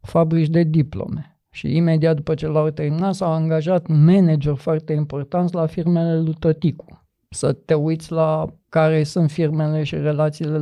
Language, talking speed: Romanian, 155 wpm